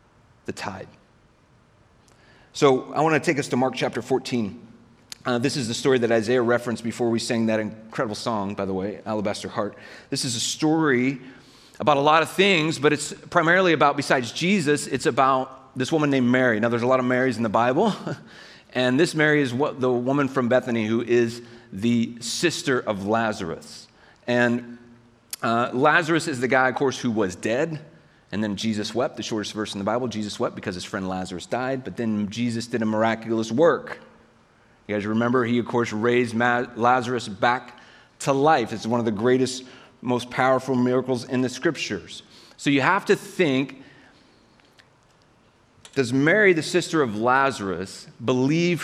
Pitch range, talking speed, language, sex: 115-150 Hz, 175 wpm, English, male